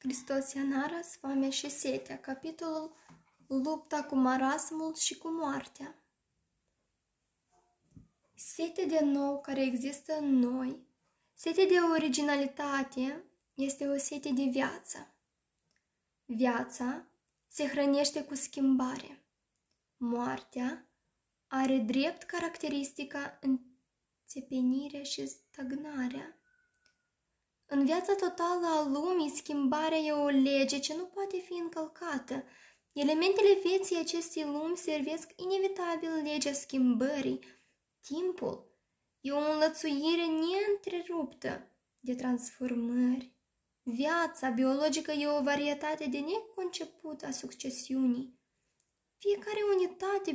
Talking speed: 95 wpm